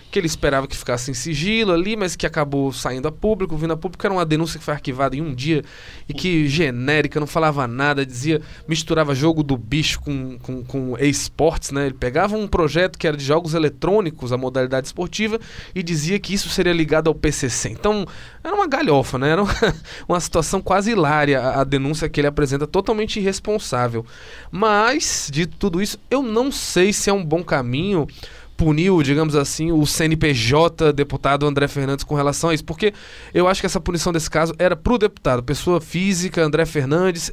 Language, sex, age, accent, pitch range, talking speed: Portuguese, male, 20-39, Brazilian, 140-180 Hz, 190 wpm